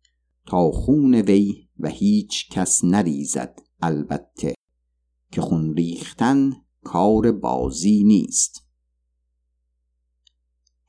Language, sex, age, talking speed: Persian, male, 50-69, 75 wpm